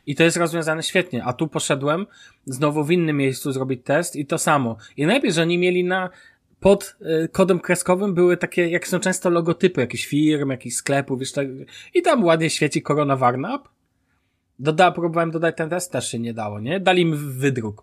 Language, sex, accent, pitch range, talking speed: Polish, male, native, 130-170 Hz, 190 wpm